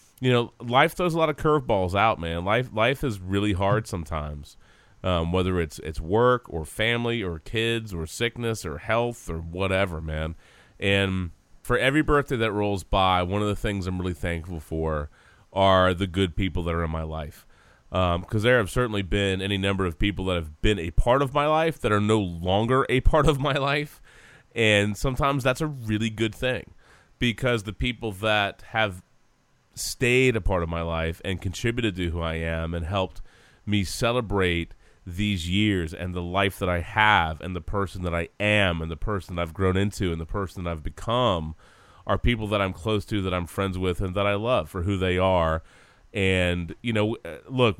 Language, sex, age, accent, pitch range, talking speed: English, male, 30-49, American, 90-115 Hz, 200 wpm